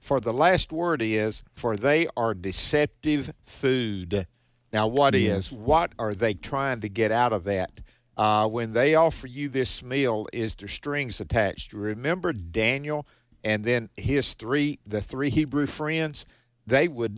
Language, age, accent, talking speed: English, 50-69, American, 155 wpm